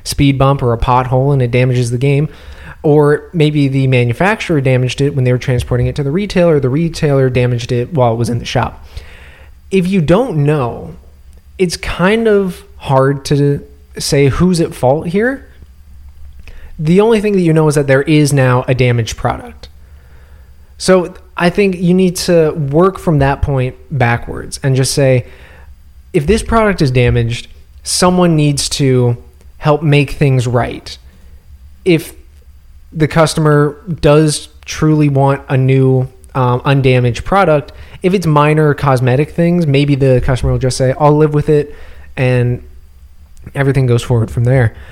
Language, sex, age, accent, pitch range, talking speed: English, male, 20-39, American, 115-150 Hz, 160 wpm